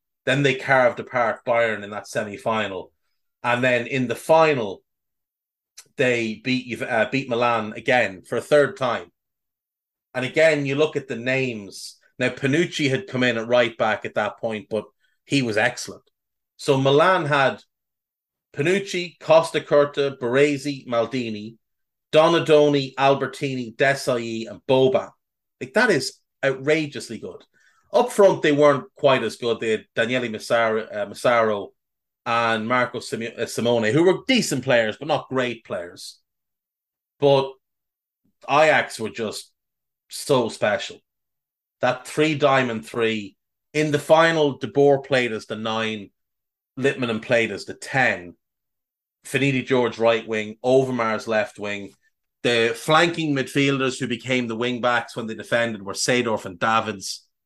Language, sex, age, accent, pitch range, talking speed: English, male, 30-49, Irish, 115-140 Hz, 140 wpm